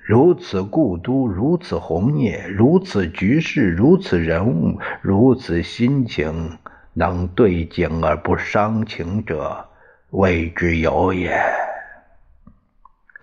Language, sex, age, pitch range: Chinese, male, 60-79, 85-125 Hz